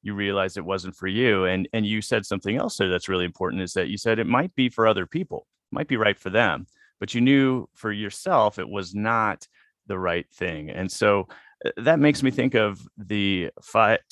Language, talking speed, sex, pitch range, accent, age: English, 215 wpm, male, 90-110 Hz, American, 30-49